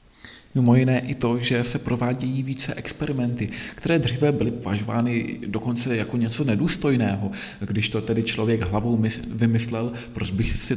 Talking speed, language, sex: 145 wpm, Czech, male